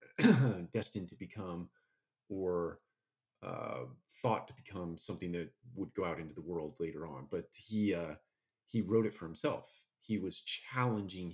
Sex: male